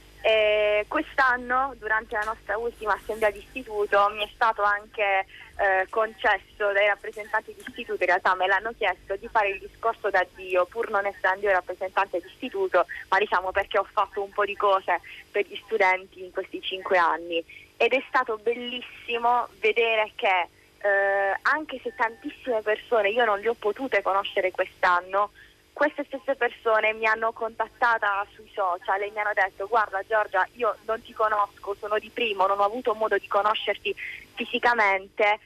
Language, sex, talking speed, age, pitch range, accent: Italian, female, 165 wpm, 20-39, 195-225 Hz, native